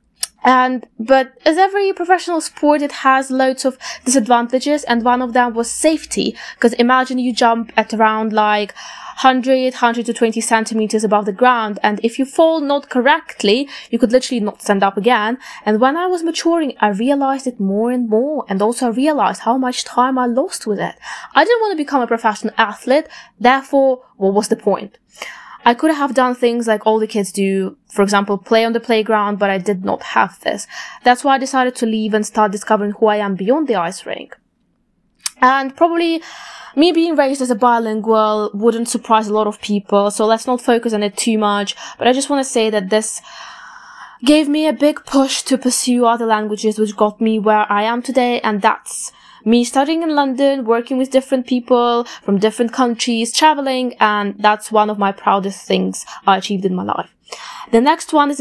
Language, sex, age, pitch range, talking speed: English, female, 20-39, 215-275 Hz, 200 wpm